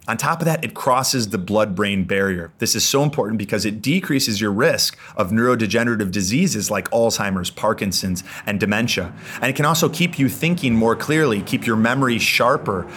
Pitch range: 100-125 Hz